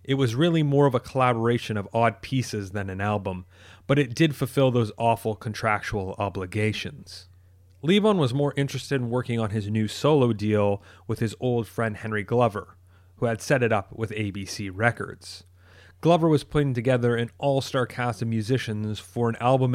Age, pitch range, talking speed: 30-49, 100-125 Hz, 175 wpm